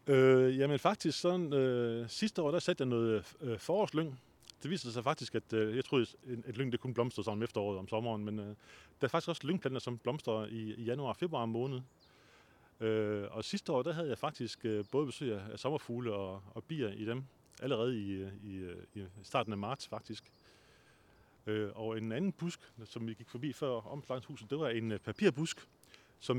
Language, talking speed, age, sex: Danish, 200 wpm, 30-49, male